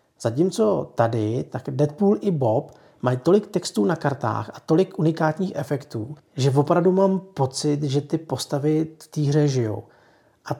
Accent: native